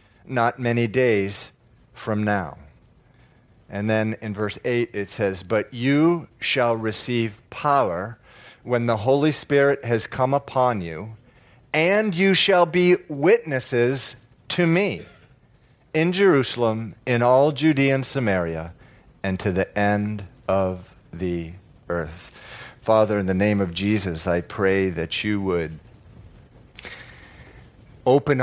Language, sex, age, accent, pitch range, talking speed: English, male, 40-59, American, 100-135 Hz, 120 wpm